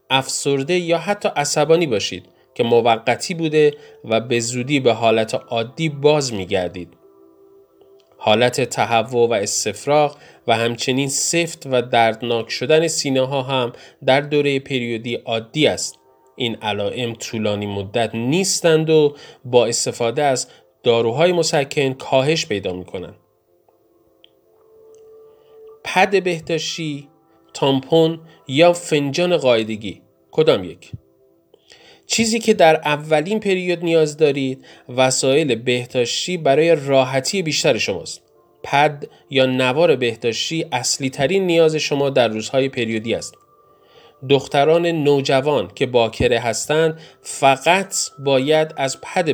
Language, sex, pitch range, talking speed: Persian, male, 115-160 Hz, 110 wpm